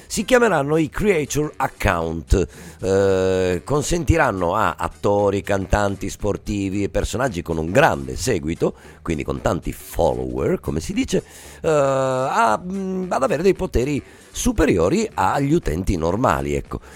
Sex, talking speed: male, 125 wpm